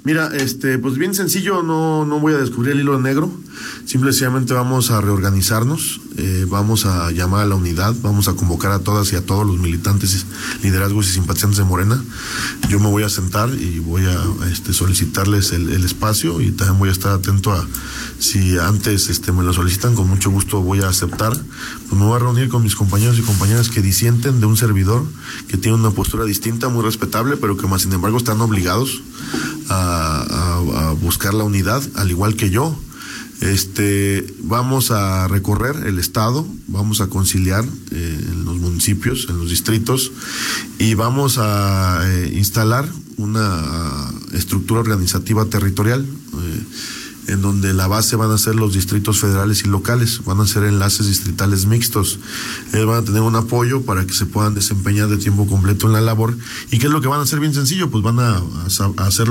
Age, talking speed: 40-59, 185 wpm